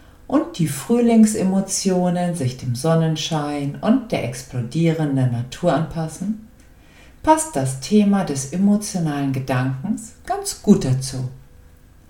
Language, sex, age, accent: German, female, 50-69, German